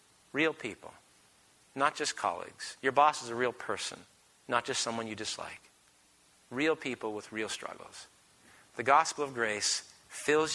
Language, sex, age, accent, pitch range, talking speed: English, male, 40-59, American, 115-145 Hz, 150 wpm